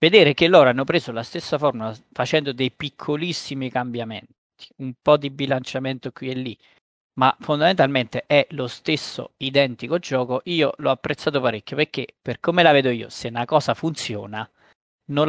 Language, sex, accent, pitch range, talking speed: Italian, male, native, 120-150 Hz, 160 wpm